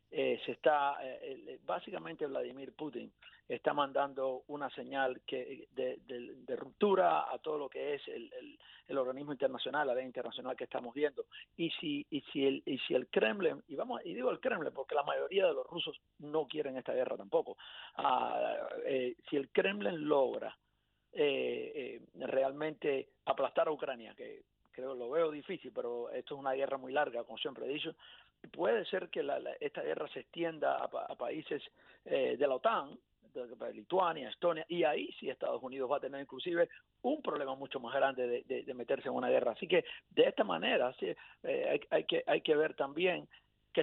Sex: male